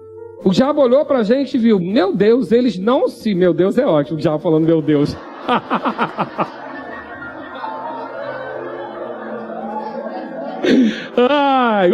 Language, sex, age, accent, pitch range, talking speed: Portuguese, male, 40-59, Brazilian, 215-285 Hz, 110 wpm